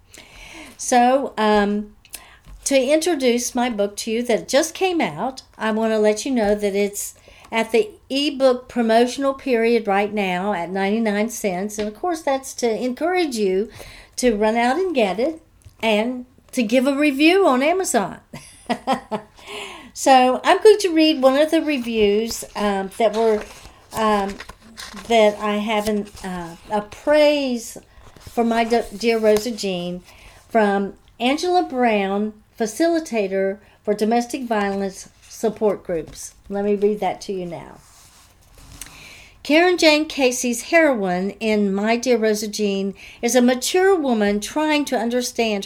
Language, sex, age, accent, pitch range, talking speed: English, female, 60-79, American, 210-265 Hz, 140 wpm